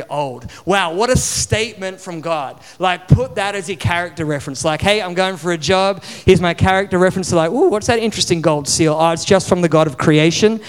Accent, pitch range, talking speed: Australian, 175-205 Hz, 225 wpm